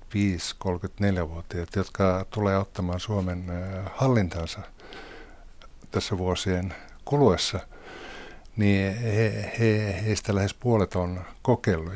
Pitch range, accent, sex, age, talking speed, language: 90-105 Hz, native, male, 60-79, 75 wpm, Finnish